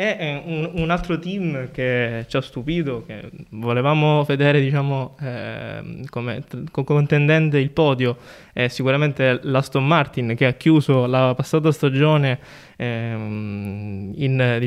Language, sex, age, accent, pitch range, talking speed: Italian, male, 20-39, native, 125-150 Hz, 110 wpm